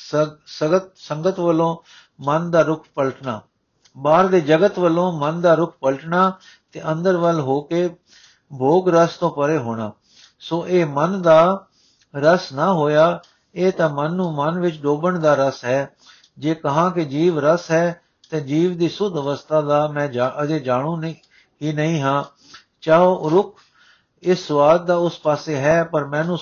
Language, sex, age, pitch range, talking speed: Punjabi, male, 60-79, 145-175 Hz, 160 wpm